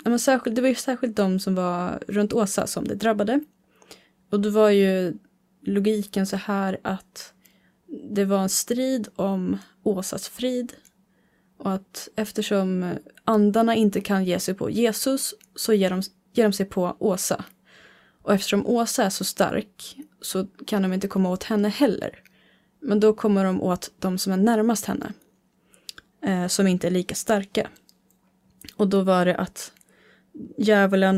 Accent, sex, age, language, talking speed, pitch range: Swedish, female, 20-39, English, 150 wpm, 185-215 Hz